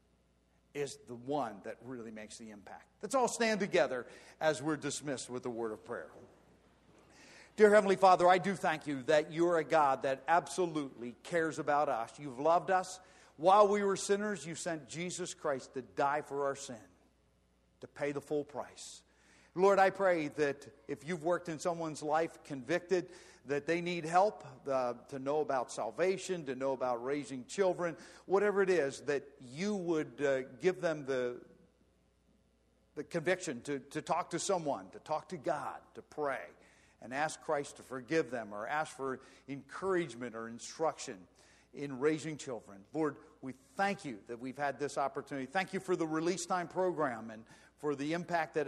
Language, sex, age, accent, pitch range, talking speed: English, male, 50-69, American, 130-175 Hz, 175 wpm